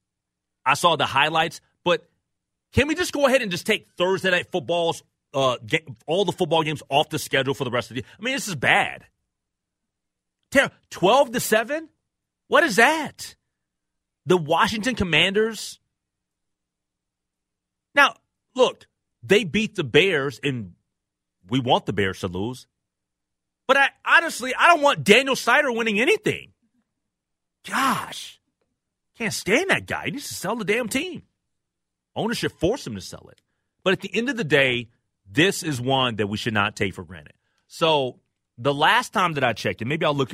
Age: 30-49